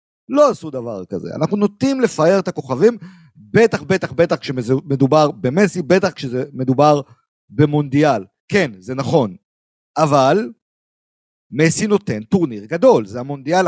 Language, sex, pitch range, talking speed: Hebrew, male, 140-200 Hz, 120 wpm